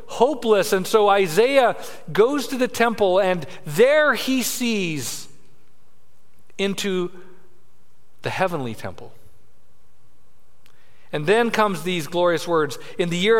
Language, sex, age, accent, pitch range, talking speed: English, male, 40-59, American, 145-235 Hz, 110 wpm